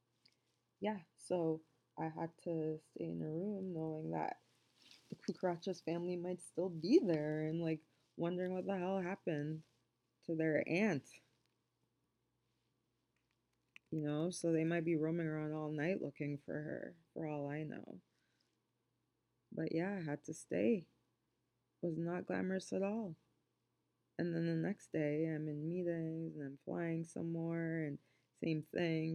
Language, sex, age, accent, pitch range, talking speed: English, female, 20-39, American, 145-165 Hz, 150 wpm